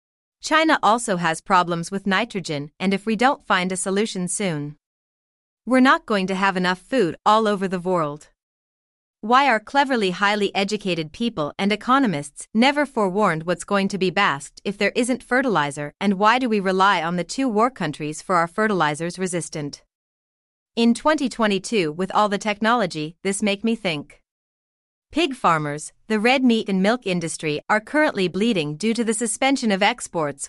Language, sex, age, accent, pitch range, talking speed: English, female, 30-49, American, 180-225 Hz, 165 wpm